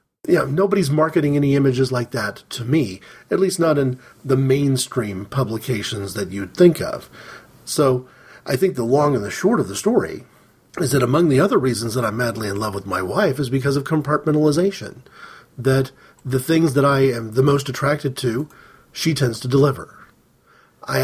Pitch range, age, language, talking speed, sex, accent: 125-160 Hz, 40-59, English, 185 wpm, male, American